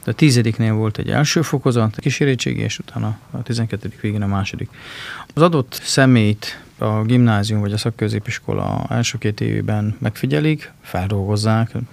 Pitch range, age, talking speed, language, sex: 110-130 Hz, 30-49, 140 wpm, Hungarian, male